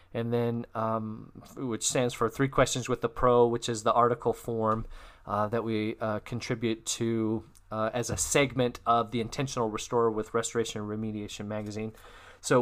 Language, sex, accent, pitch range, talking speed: English, male, American, 115-140 Hz, 170 wpm